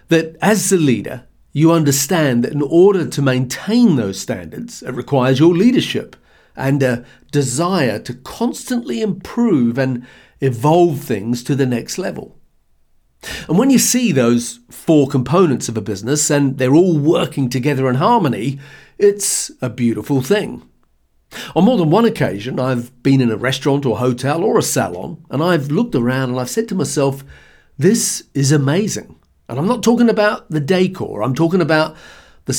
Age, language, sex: 50-69, English, male